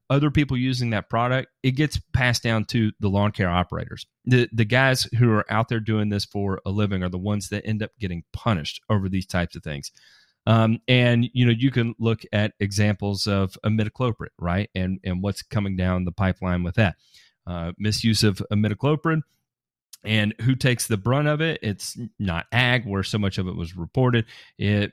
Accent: American